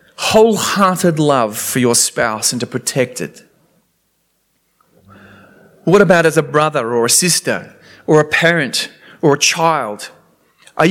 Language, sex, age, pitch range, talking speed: English, male, 40-59, 135-175 Hz, 130 wpm